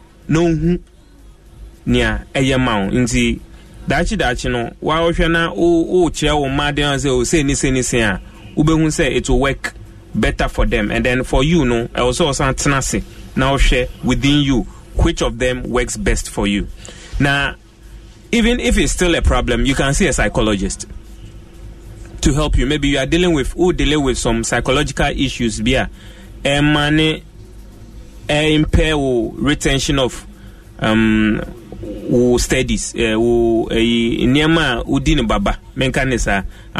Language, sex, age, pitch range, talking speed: English, male, 30-49, 110-150 Hz, 125 wpm